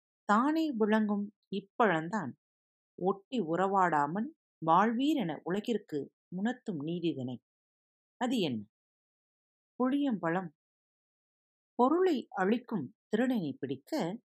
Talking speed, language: 65 wpm, Tamil